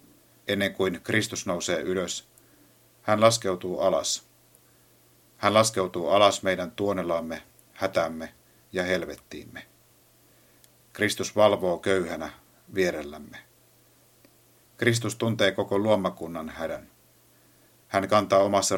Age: 50-69